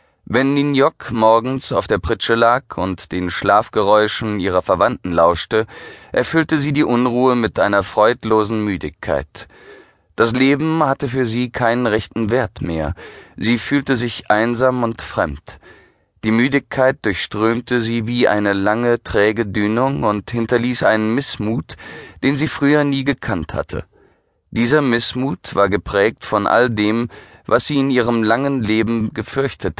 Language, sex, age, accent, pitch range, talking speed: German, male, 30-49, German, 105-130 Hz, 140 wpm